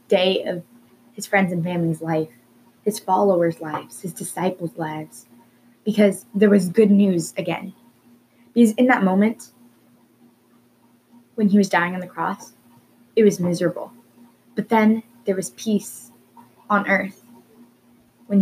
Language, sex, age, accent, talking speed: English, female, 10-29, American, 135 wpm